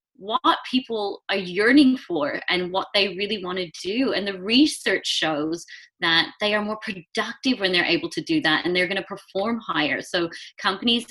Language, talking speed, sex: English, 190 wpm, female